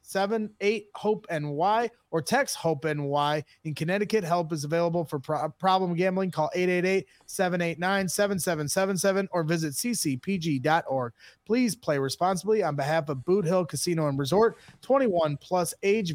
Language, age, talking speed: English, 30-49, 140 wpm